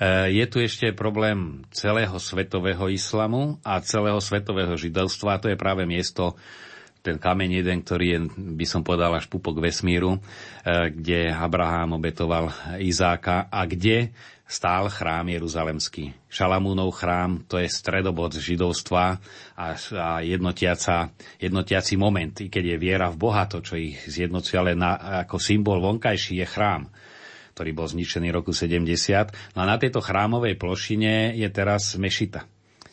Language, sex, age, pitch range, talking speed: Slovak, male, 40-59, 90-105 Hz, 135 wpm